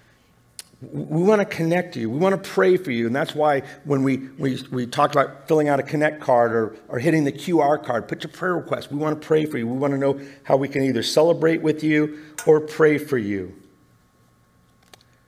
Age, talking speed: 50-69, 225 wpm